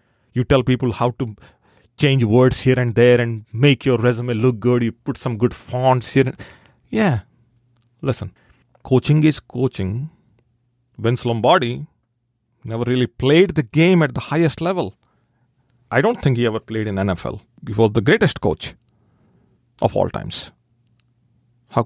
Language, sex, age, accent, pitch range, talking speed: English, male, 40-59, Indian, 115-145 Hz, 150 wpm